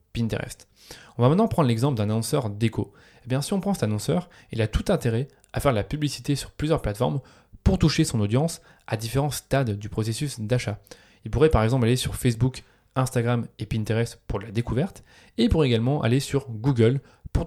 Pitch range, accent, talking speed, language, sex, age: 110-135 Hz, French, 205 wpm, French, male, 20-39